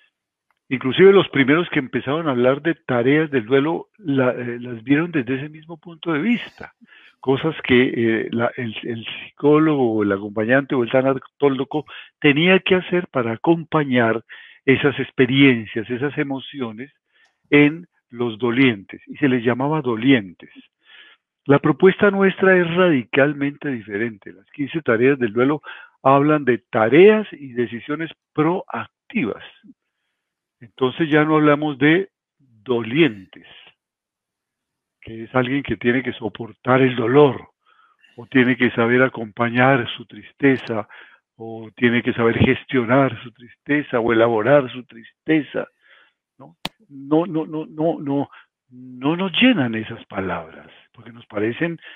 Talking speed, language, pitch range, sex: 130 wpm, Spanish, 120-155 Hz, male